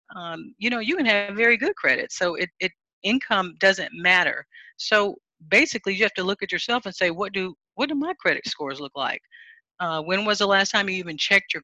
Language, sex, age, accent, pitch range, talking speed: English, female, 40-59, American, 165-220 Hz, 225 wpm